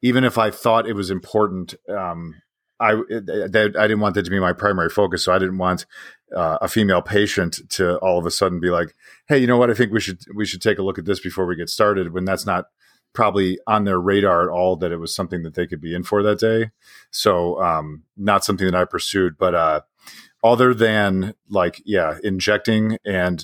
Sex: male